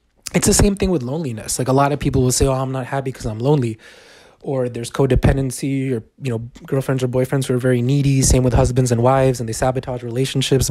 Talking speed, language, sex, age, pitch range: 235 wpm, English, male, 20-39, 125-145 Hz